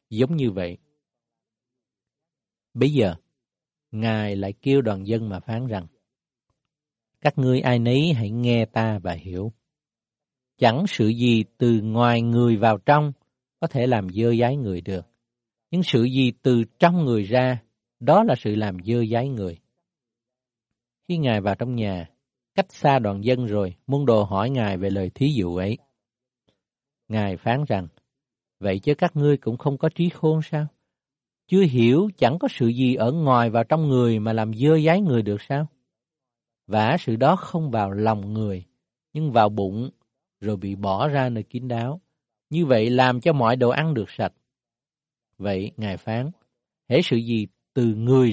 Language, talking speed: Vietnamese, 170 wpm